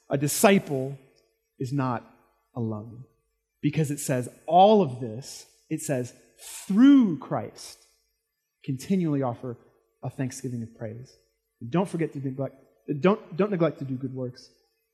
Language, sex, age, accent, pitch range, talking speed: English, male, 30-49, American, 140-225 Hz, 130 wpm